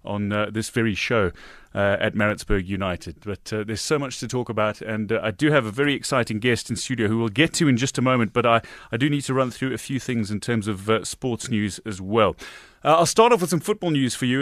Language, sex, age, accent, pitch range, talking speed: English, male, 30-49, British, 115-145 Hz, 270 wpm